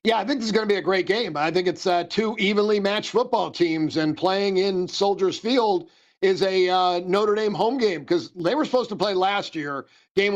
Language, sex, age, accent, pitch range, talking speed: English, male, 50-69, American, 170-205 Hz, 240 wpm